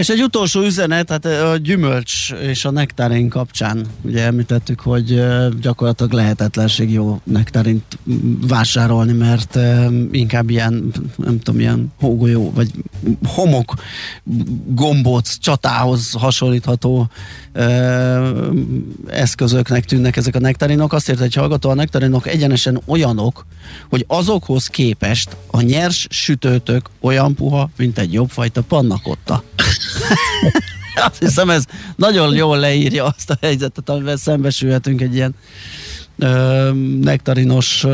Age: 30-49